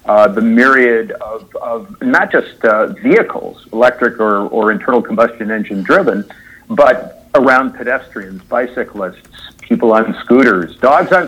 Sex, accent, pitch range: male, American, 110-155 Hz